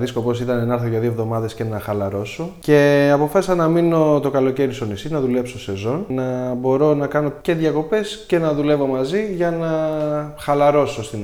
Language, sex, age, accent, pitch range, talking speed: Greek, male, 20-39, native, 115-150 Hz, 185 wpm